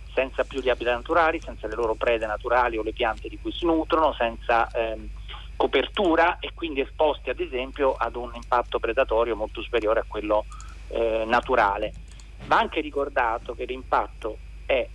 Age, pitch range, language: 40-59, 115-135 Hz, Italian